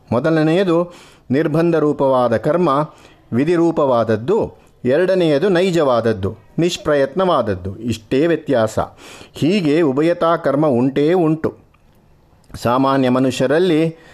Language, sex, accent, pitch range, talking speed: Kannada, male, native, 130-160 Hz, 70 wpm